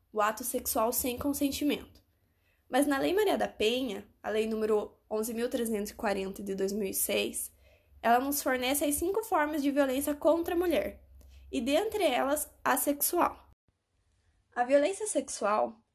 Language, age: Portuguese, 10-29